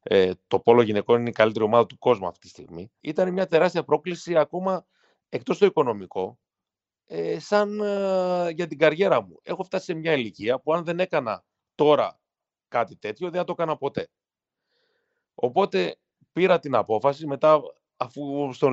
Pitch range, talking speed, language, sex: 110-175 Hz, 165 wpm, Greek, male